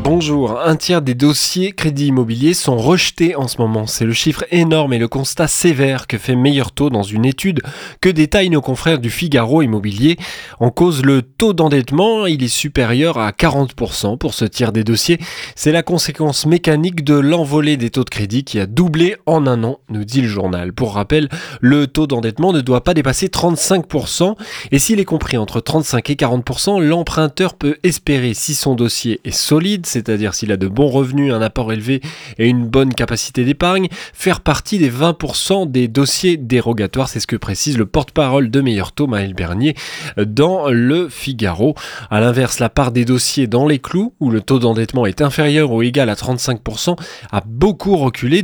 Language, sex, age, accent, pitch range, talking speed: French, male, 20-39, French, 115-160 Hz, 190 wpm